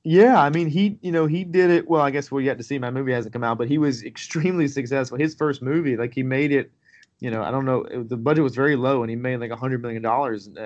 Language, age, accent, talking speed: English, 30-49, American, 285 wpm